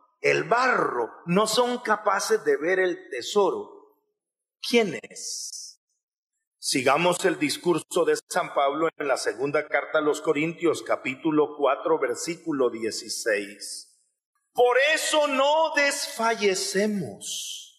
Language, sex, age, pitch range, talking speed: English, male, 40-59, 170-265 Hz, 110 wpm